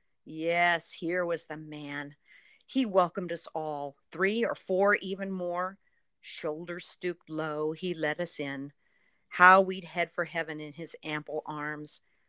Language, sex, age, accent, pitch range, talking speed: English, female, 50-69, American, 165-210 Hz, 145 wpm